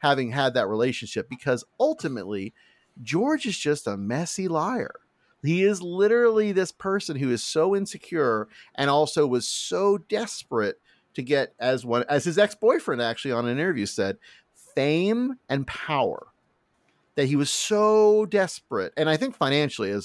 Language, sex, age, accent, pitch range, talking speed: English, male, 40-59, American, 120-195 Hz, 150 wpm